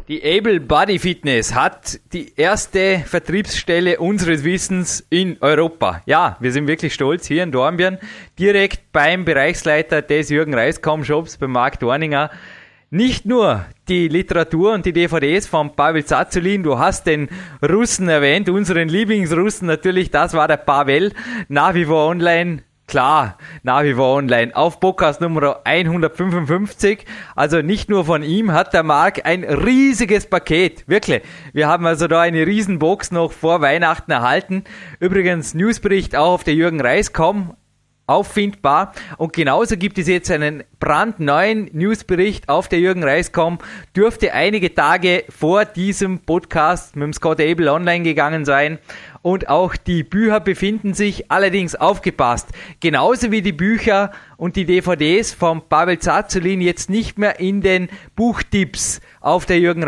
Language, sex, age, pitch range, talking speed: German, male, 20-39, 155-195 Hz, 145 wpm